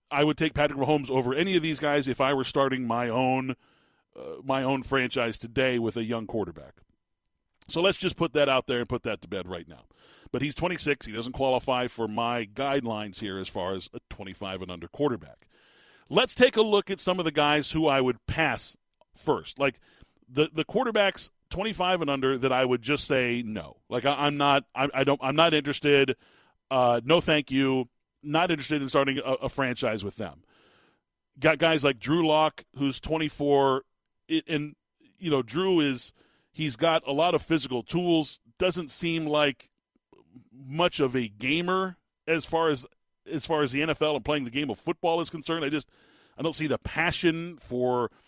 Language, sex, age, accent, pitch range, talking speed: English, male, 40-59, American, 125-160 Hz, 195 wpm